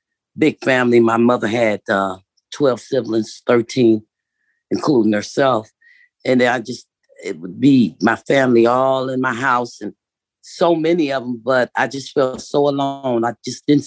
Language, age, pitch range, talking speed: English, 40-59, 115-130 Hz, 165 wpm